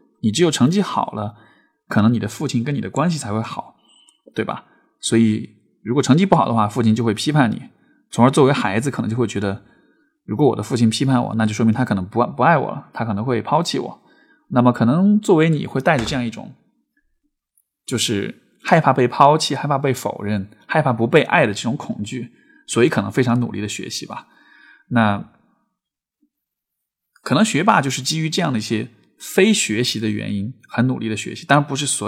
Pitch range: 110-160 Hz